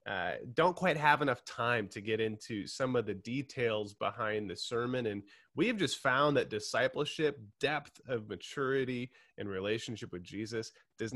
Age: 30-49